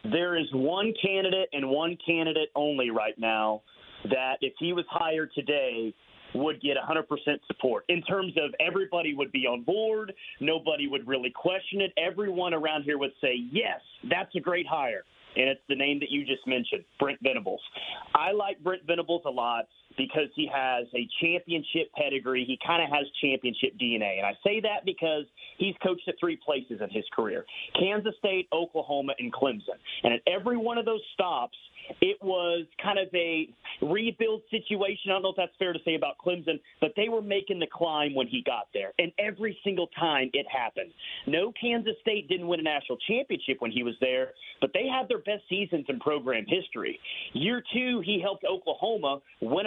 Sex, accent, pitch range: male, American, 140-195 Hz